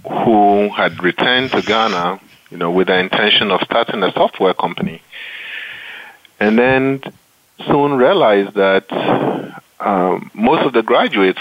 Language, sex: English, male